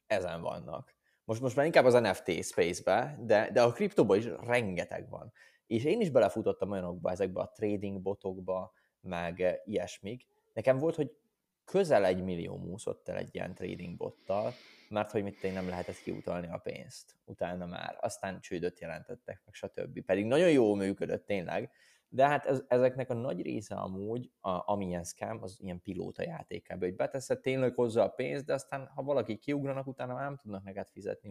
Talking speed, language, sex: 175 wpm, Hungarian, male